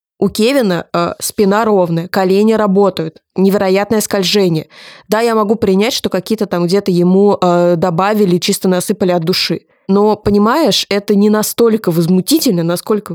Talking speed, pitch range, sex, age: 140 wpm, 175-215 Hz, female, 20-39